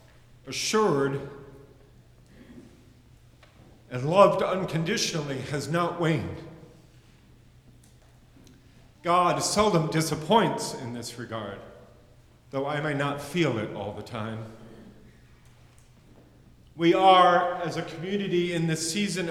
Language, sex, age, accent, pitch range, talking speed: English, male, 40-59, American, 125-180 Hz, 95 wpm